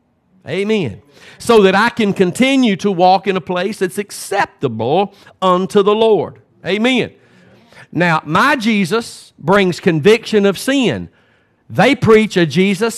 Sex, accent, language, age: male, American, English, 50-69